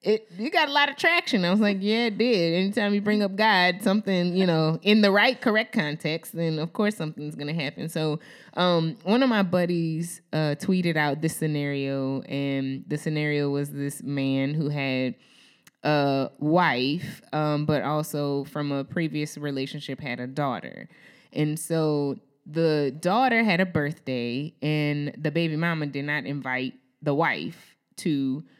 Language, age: English, 20-39